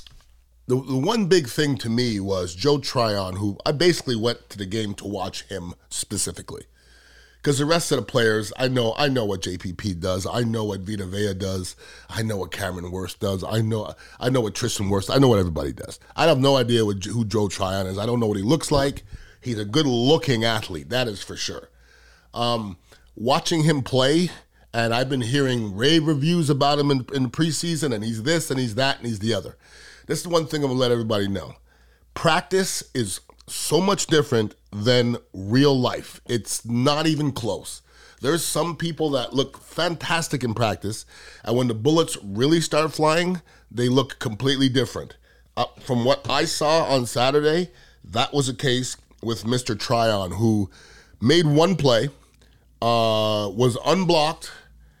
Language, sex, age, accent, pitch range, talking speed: English, male, 30-49, American, 100-145 Hz, 185 wpm